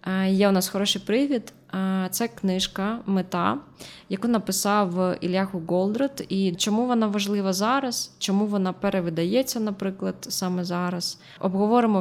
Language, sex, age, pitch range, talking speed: Ukrainian, female, 20-39, 180-205 Hz, 120 wpm